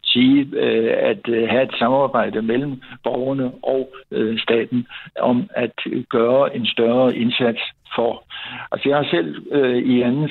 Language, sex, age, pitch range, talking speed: Danish, male, 60-79, 115-140 Hz, 115 wpm